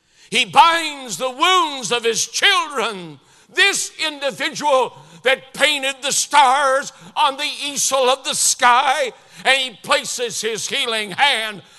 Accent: American